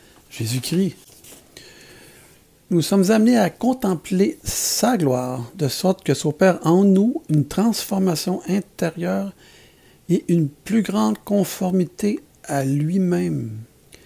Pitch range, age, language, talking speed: 140-195 Hz, 60-79, French, 100 wpm